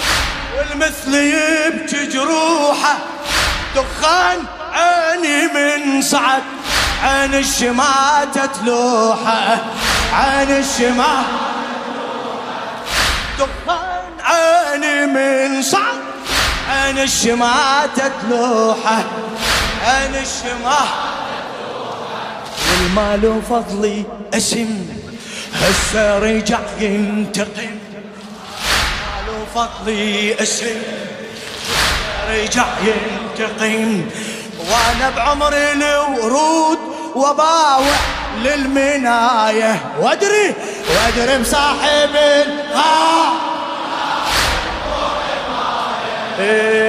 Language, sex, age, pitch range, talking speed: Arabic, male, 20-39, 220-290 Hz, 50 wpm